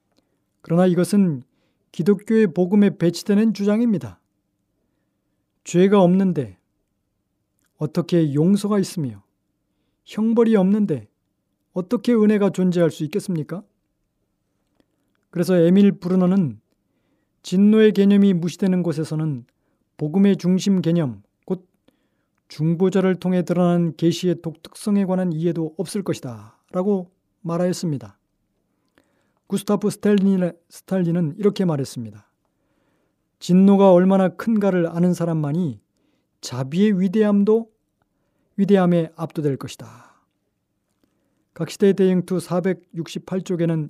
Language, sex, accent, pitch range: Korean, male, native, 155-190 Hz